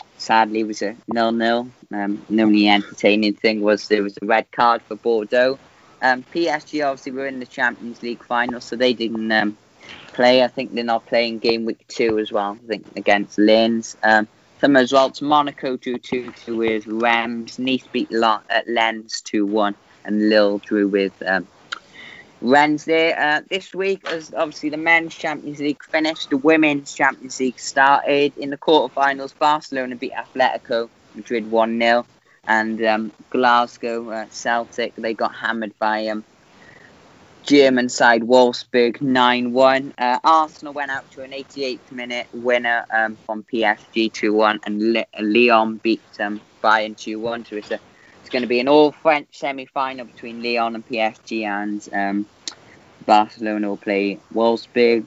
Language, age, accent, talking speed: English, 30-49, British, 155 wpm